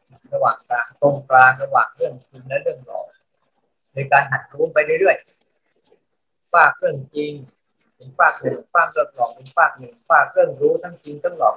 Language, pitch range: Thai, 135-185 Hz